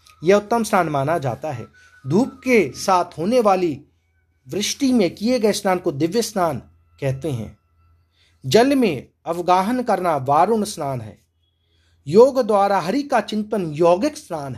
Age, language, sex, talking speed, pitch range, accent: 40-59, Hindi, male, 145 wpm, 135-220 Hz, native